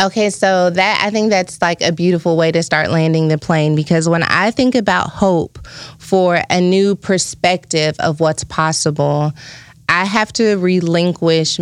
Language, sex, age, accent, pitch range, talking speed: English, female, 20-39, American, 155-175 Hz, 165 wpm